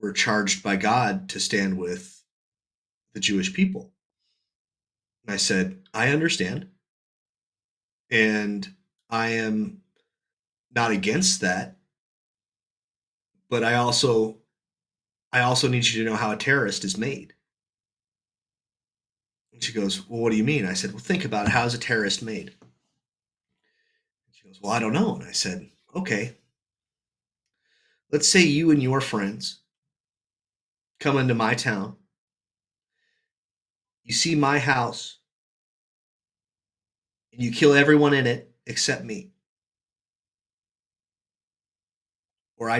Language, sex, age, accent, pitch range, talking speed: English, male, 30-49, American, 100-150 Hz, 120 wpm